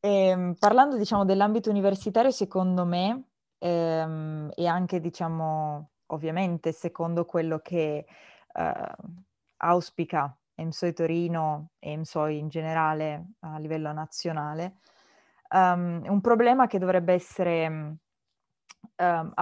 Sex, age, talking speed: female, 20-39, 100 wpm